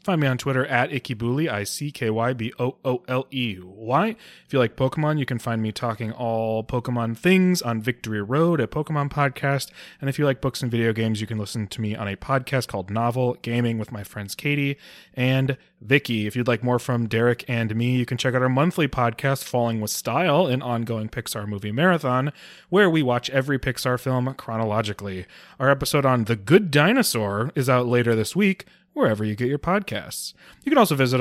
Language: English